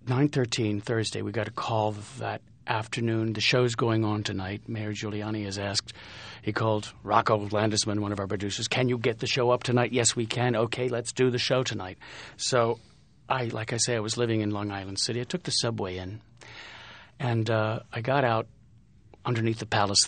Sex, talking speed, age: male, 195 wpm, 50-69